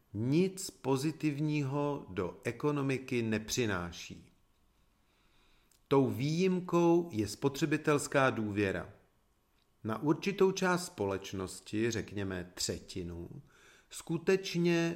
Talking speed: 70 wpm